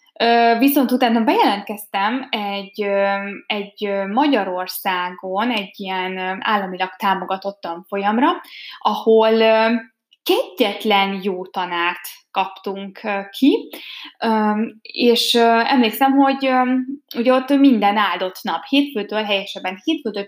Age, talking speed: 20-39, 85 wpm